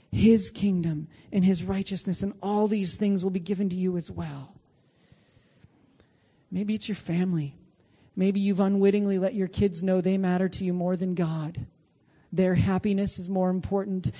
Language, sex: English, male